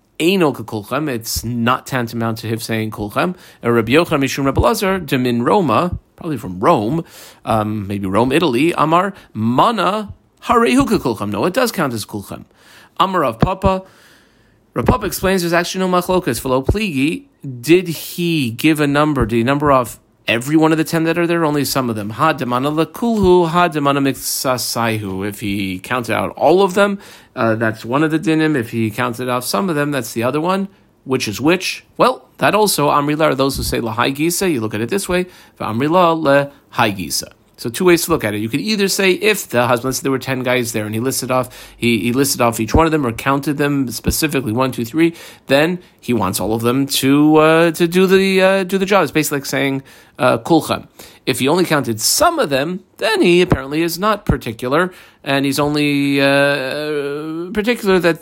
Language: English